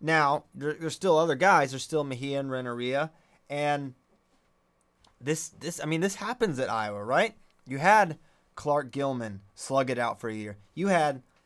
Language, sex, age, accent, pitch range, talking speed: English, male, 20-39, American, 120-165 Hz, 175 wpm